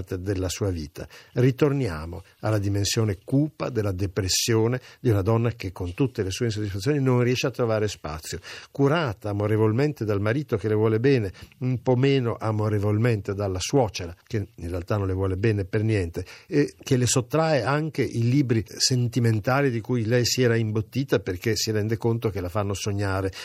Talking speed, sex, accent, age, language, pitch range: 175 wpm, male, native, 50-69, Italian, 105-130 Hz